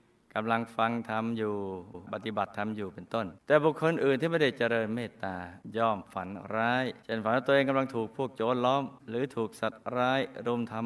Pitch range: 105-130 Hz